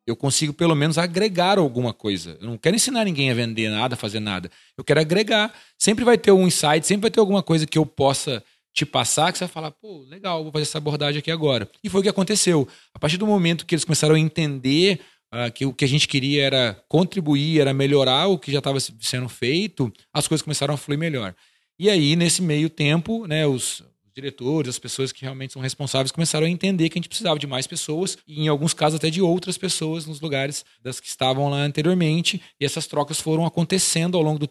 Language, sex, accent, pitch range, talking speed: Portuguese, male, Brazilian, 130-165 Hz, 230 wpm